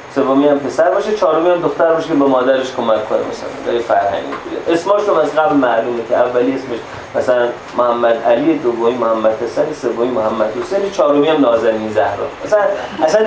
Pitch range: 120-165 Hz